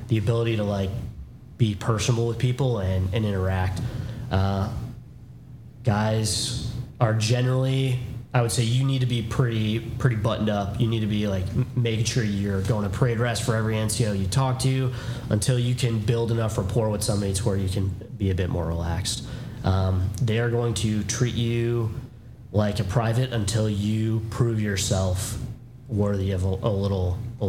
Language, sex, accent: English, male, American